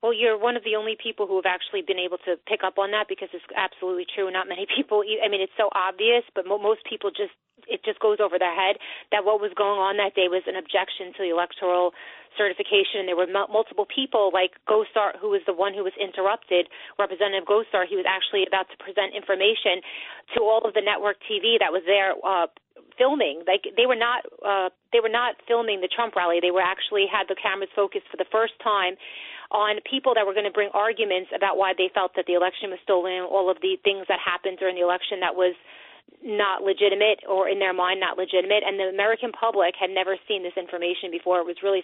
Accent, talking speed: American, 225 wpm